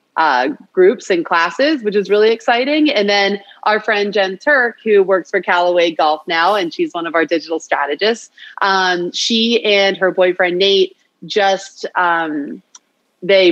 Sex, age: female, 30-49